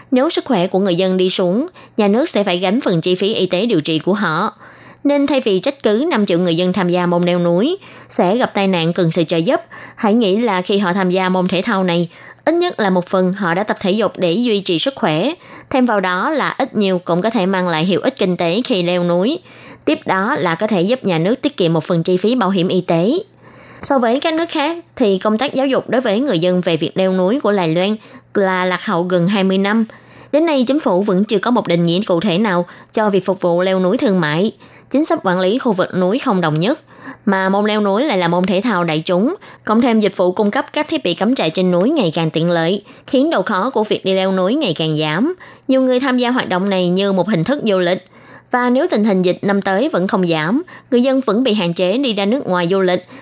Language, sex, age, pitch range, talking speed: Vietnamese, female, 20-39, 180-245 Hz, 270 wpm